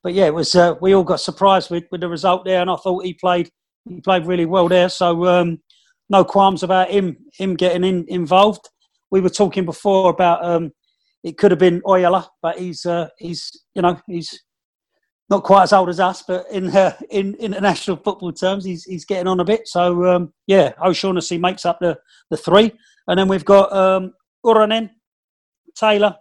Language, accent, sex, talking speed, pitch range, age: English, British, male, 200 wpm, 170-195 Hz, 40-59